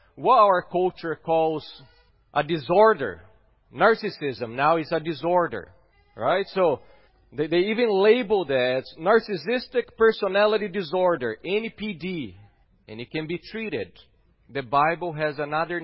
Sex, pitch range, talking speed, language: male, 135-195 Hz, 115 wpm, English